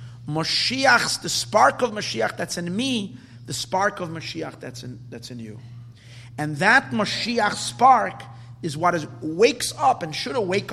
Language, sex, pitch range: English, male, 120-145 Hz